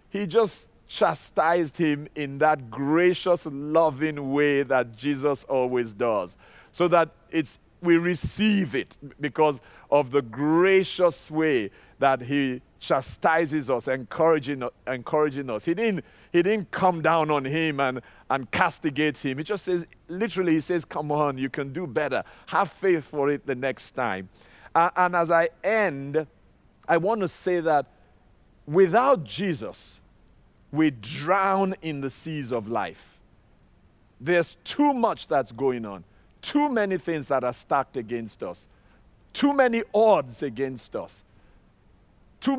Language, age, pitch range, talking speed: English, 50-69, 135-185 Hz, 140 wpm